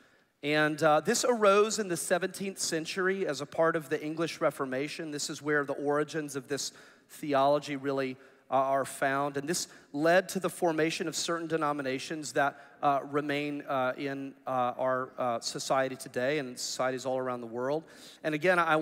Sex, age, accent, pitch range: male, 40-59, American, 145-185 Hz